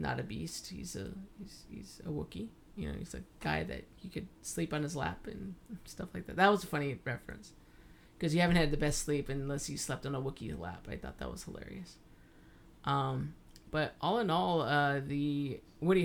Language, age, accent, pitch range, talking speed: English, 30-49, American, 135-160 Hz, 215 wpm